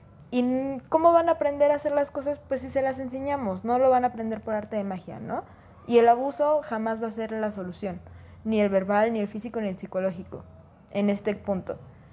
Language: Spanish